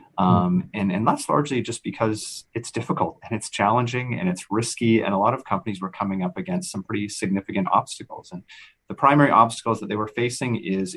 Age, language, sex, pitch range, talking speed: 30-49, English, male, 100-140 Hz, 200 wpm